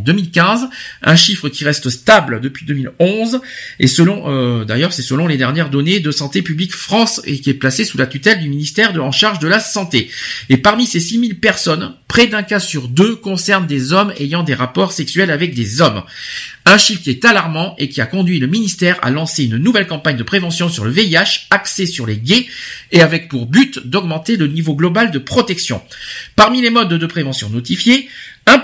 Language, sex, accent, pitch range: French, male, French, 130-210 Hz